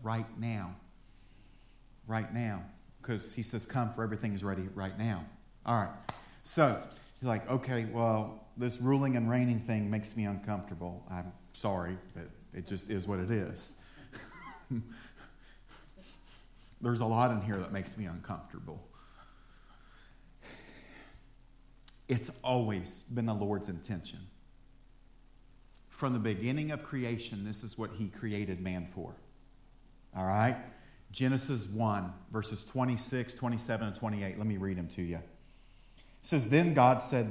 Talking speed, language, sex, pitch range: 135 wpm, English, male, 105-130 Hz